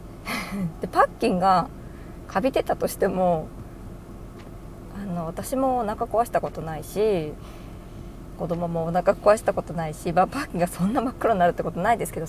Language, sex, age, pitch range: Japanese, female, 20-39, 170-230 Hz